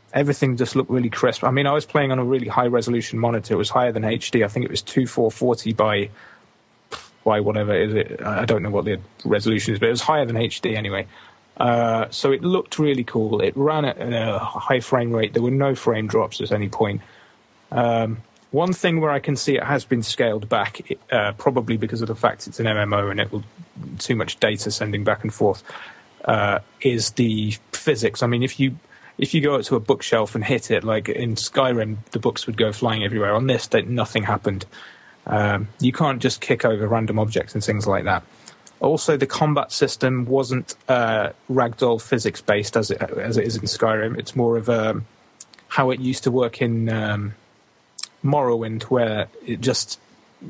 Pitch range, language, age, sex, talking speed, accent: 110-130 Hz, English, 30-49, male, 205 wpm, British